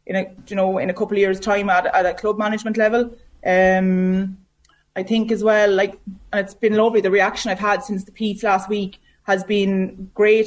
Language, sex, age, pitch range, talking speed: English, female, 20-39, 190-215 Hz, 220 wpm